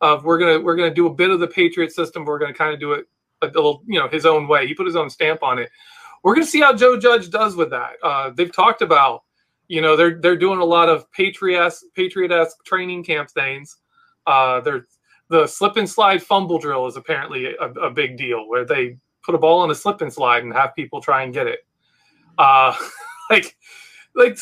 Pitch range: 150-195 Hz